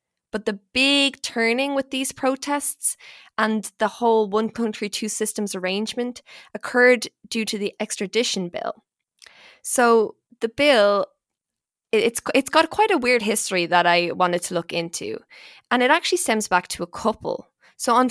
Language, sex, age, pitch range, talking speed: English, female, 20-39, 185-245 Hz, 155 wpm